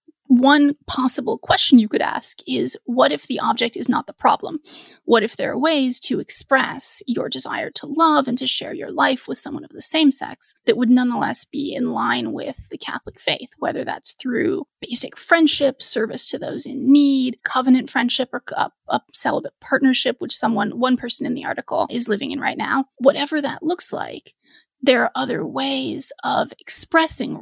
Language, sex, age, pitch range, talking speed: English, female, 30-49, 250-310 Hz, 190 wpm